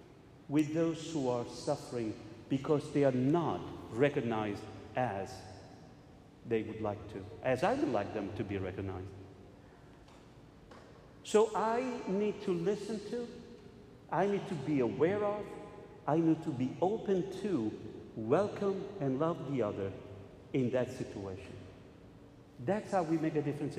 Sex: male